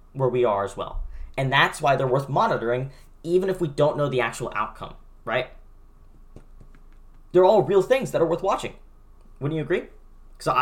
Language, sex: English, male